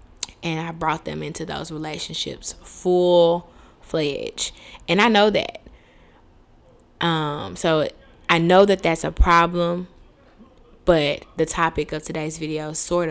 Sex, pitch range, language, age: female, 155-195 Hz, English, 10-29